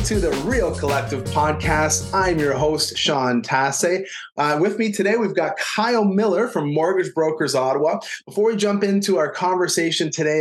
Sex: male